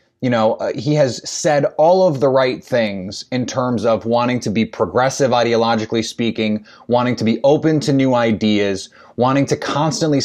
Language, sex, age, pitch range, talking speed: English, male, 20-39, 115-140 Hz, 175 wpm